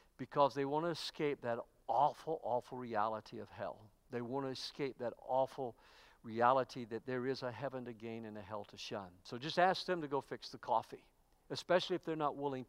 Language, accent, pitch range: English, American, 125-160 Hz